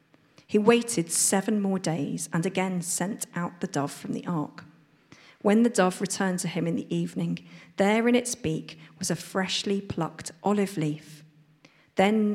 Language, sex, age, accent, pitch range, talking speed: English, female, 40-59, British, 160-190 Hz, 165 wpm